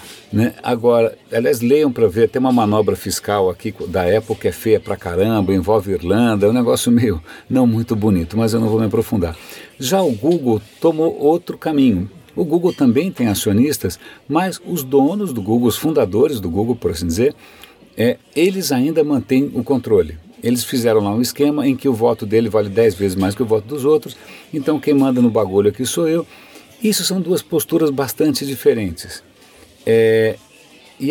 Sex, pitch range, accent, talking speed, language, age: male, 110-155 Hz, Brazilian, 185 wpm, Portuguese, 60-79